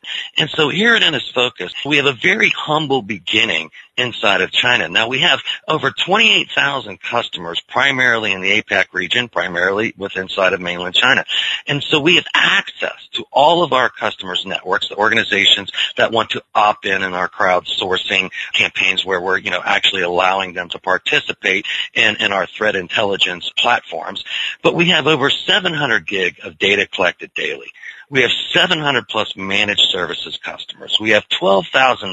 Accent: American